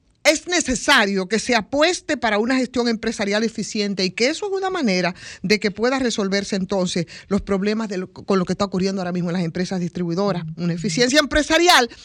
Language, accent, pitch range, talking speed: Spanish, American, 200-265 Hz, 195 wpm